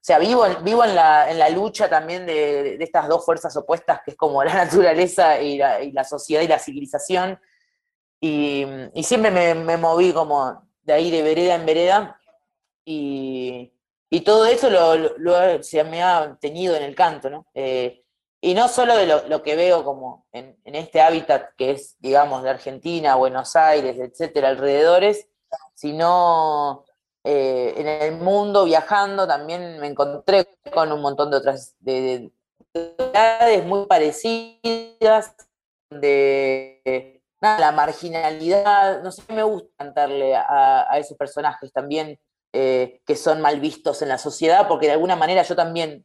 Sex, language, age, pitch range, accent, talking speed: female, Spanish, 20-39, 140-180 Hz, Argentinian, 160 wpm